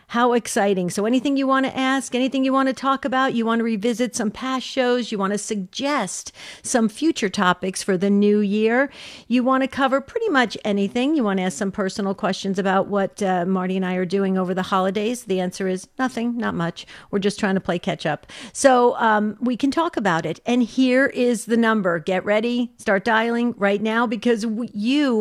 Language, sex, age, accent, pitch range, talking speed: English, female, 50-69, American, 200-245 Hz, 215 wpm